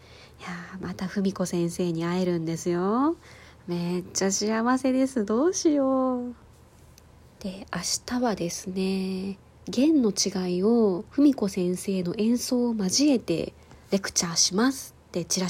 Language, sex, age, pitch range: Japanese, female, 20-39, 175-225 Hz